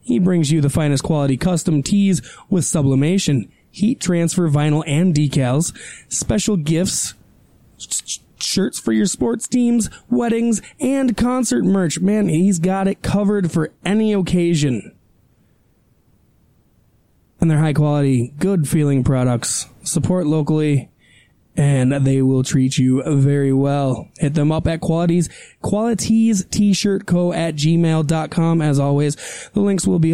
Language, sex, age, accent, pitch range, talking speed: English, male, 20-39, American, 150-195 Hz, 125 wpm